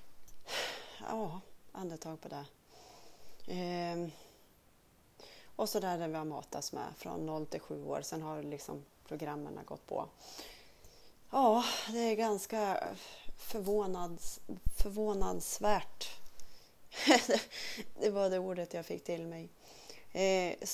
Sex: female